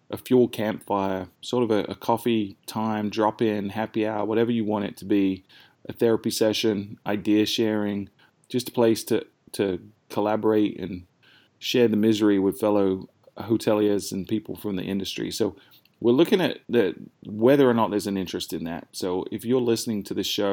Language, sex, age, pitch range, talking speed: English, male, 20-39, 100-115 Hz, 180 wpm